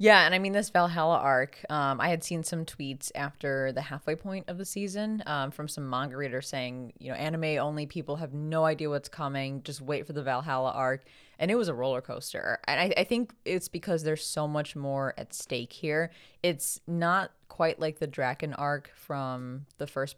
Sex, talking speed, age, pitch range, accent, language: female, 210 wpm, 20-39, 130-160 Hz, American, English